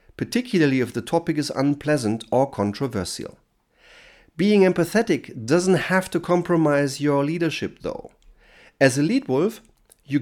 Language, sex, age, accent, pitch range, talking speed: German, male, 40-59, German, 125-175 Hz, 130 wpm